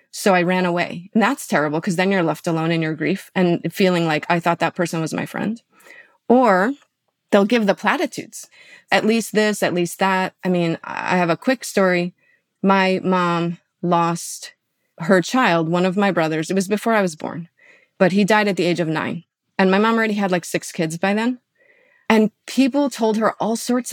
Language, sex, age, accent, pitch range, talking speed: English, female, 30-49, American, 175-225 Hz, 205 wpm